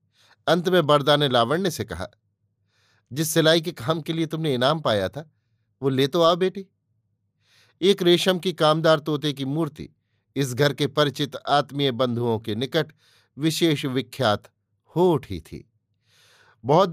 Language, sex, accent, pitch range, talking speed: Hindi, male, native, 110-160 Hz, 150 wpm